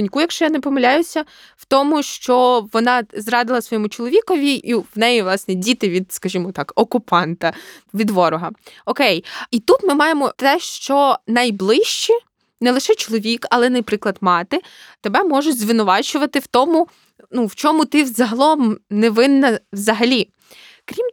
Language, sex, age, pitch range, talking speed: Ukrainian, female, 20-39, 210-275 Hz, 140 wpm